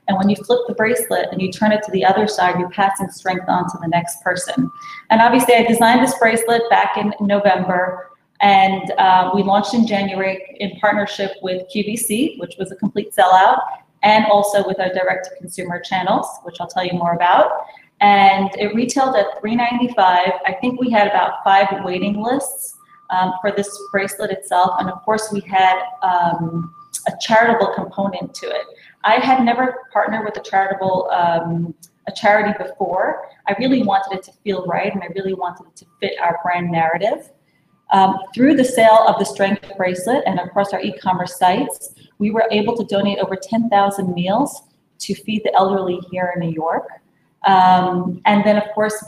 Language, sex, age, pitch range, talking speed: English, female, 30-49, 185-210 Hz, 185 wpm